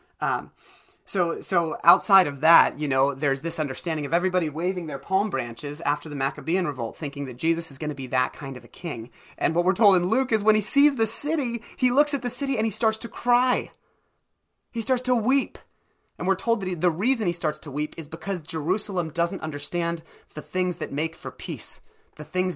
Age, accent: 30-49, American